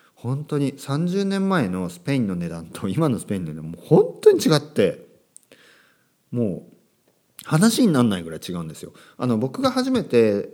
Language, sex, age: Japanese, male, 40-59